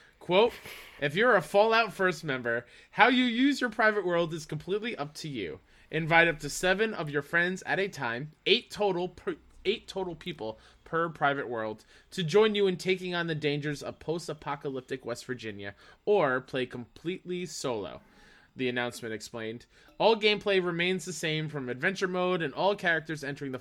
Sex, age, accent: male, 20-39, American